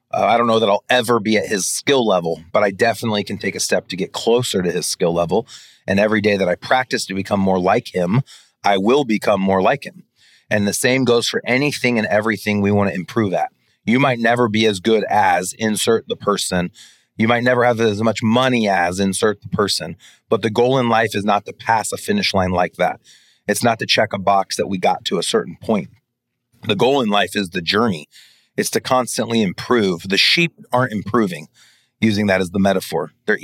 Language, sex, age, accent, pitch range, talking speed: English, male, 30-49, American, 95-115 Hz, 220 wpm